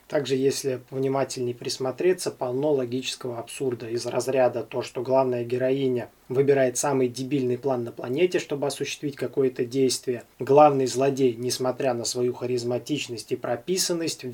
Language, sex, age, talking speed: Russian, male, 20-39, 130 wpm